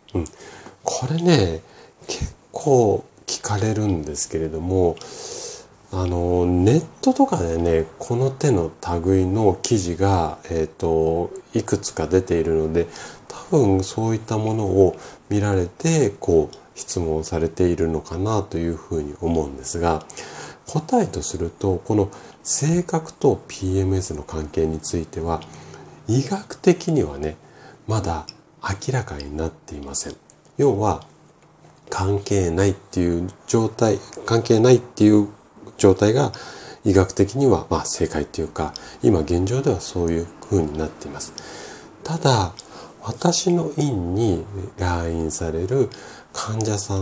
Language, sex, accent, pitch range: Japanese, male, native, 80-110 Hz